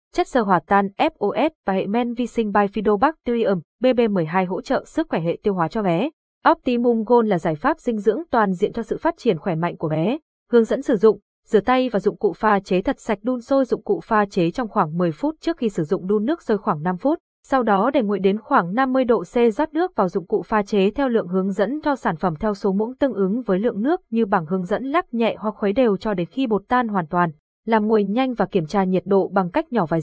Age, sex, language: 20-39, female, Vietnamese